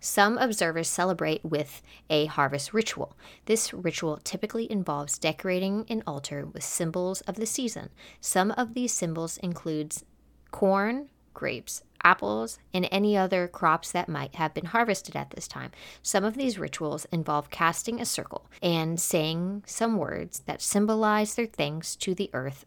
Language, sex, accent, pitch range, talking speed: English, female, American, 155-205 Hz, 155 wpm